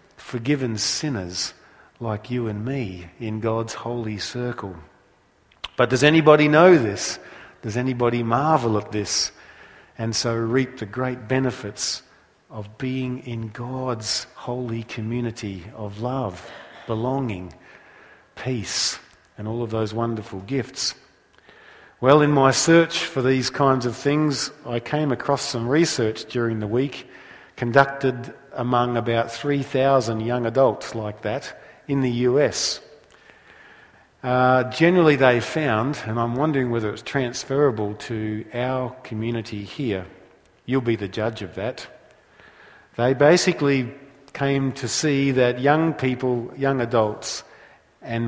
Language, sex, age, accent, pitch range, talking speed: English, male, 50-69, Australian, 110-135 Hz, 125 wpm